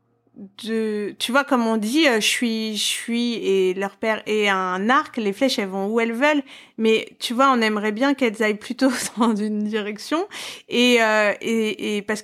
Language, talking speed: French, 190 wpm